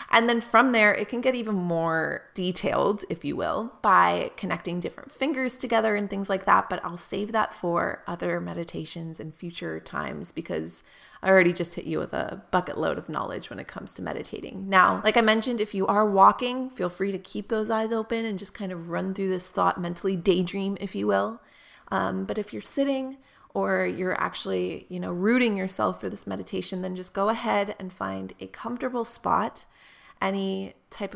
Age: 20-39